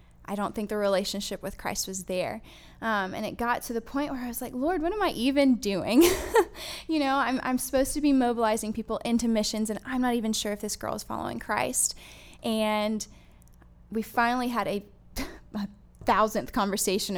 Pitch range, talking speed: 200-245 Hz, 195 wpm